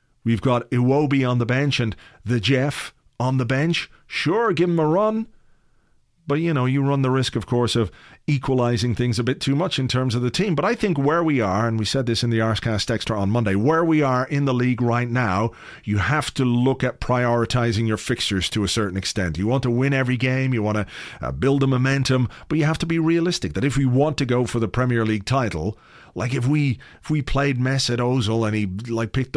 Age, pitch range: 40-59, 120-150 Hz